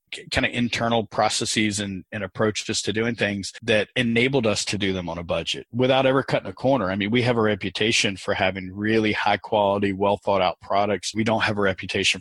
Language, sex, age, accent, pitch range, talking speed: English, male, 40-59, American, 100-120 Hz, 215 wpm